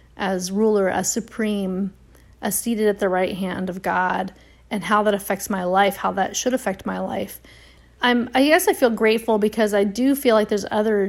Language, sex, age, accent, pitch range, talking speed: English, female, 30-49, American, 190-215 Hz, 200 wpm